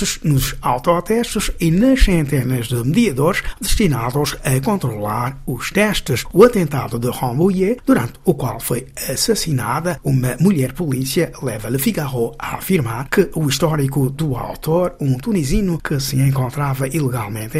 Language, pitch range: Portuguese, 130-175 Hz